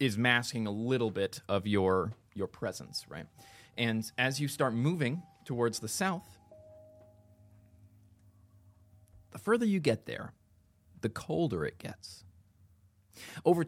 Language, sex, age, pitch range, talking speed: English, male, 30-49, 95-120 Hz, 125 wpm